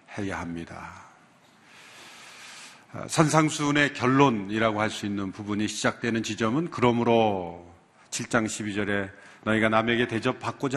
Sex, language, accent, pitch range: male, Korean, native, 100-125 Hz